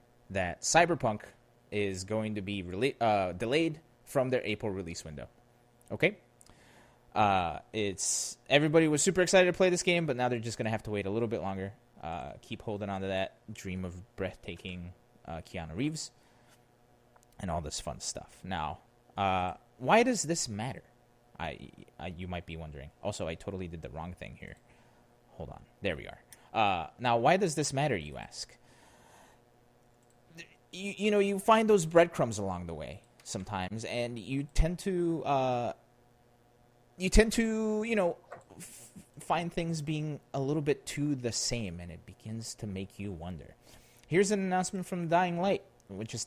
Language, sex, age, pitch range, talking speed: English, male, 20-39, 100-155 Hz, 165 wpm